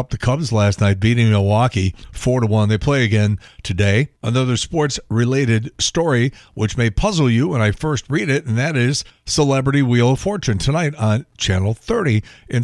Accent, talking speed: American, 175 wpm